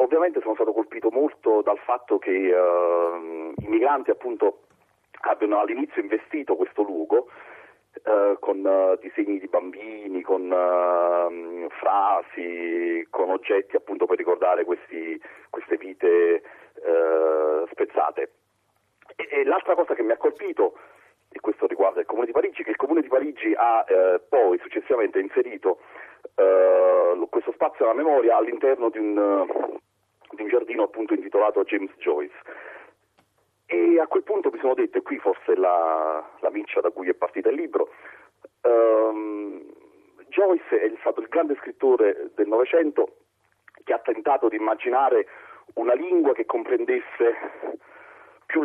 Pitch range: 325-450 Hz